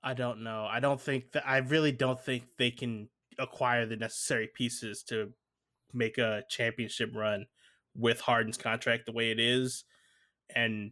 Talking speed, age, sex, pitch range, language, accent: 165 wpm, 20-39, male, 110-125 Hz, English, American